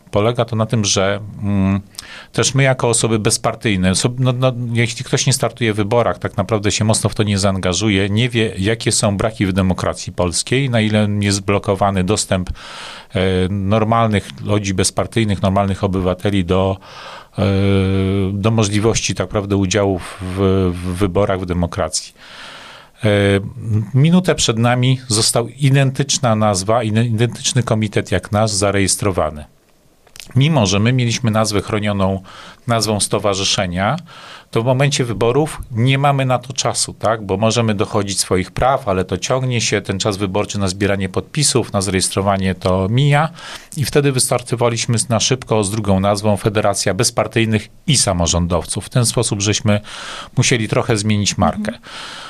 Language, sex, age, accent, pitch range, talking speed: Polish, male, 40-59, native, 100-120 Hz, 145 wpm